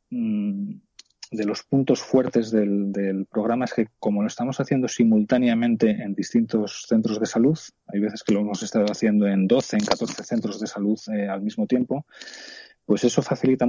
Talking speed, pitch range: 175 wpm, 105-125 Hz